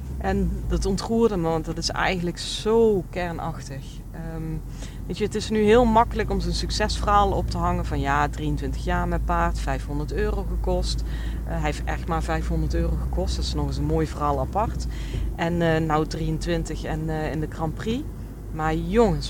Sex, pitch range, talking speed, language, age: female, 150-210 Hz, 190 wpm, Dutch, 40-59